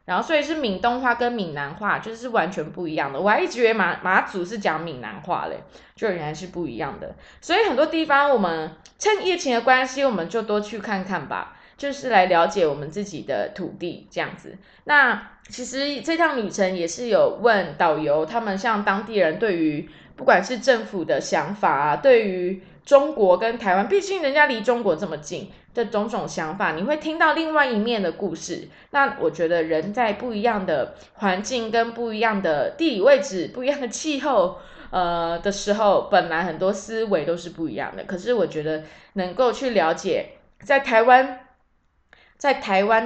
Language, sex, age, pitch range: Chinese, female, 20-39, 175-255 Hz